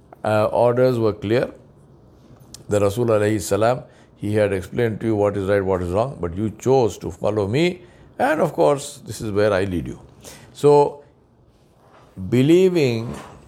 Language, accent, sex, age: English, Indian, male, 60-79